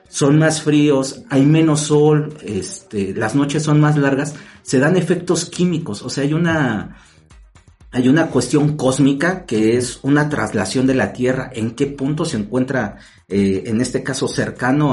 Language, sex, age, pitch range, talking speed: Spanish, male, 50-69, 110-145 Hz, 165 wpm